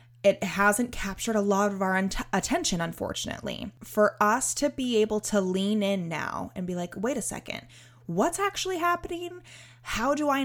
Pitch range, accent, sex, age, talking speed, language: 175-215 Hz, American, female, 20-39, 180 wpm, English